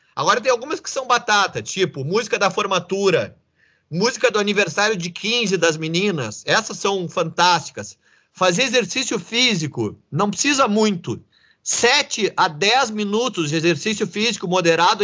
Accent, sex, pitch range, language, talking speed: Brazilian, male, 185-250 Hz, Portuguese, 135 wpm